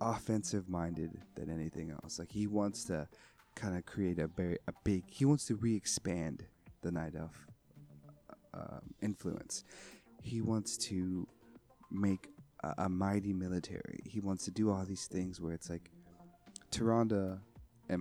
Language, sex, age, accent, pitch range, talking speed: English, male, 30-49, American, 85-115 Hz, 155 wpm